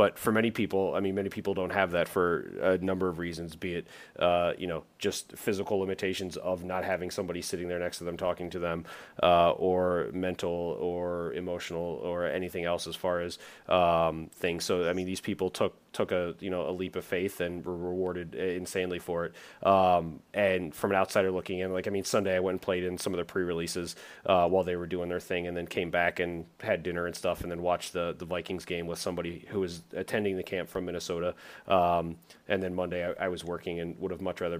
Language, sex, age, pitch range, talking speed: English, male, 30-49, 85-95 Hz, 235 wpm